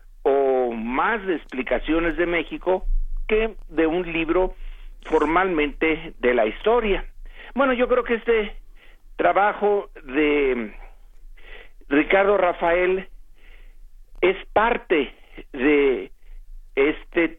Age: 50-69